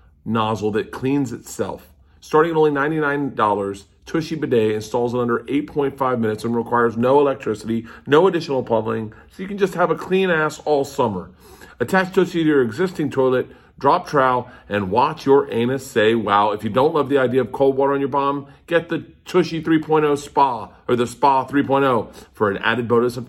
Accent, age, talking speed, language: American, 40-59, 185 wpm, English